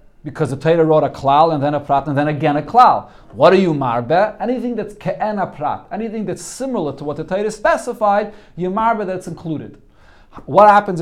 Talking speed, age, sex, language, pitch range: 205 wpm, 40-59, male, English, 155-205 Hz